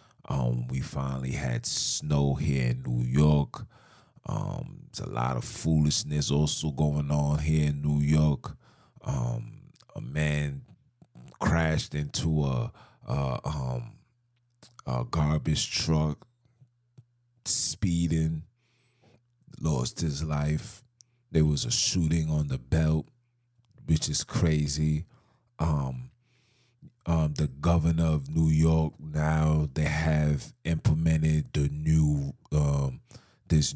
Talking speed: 110 wpm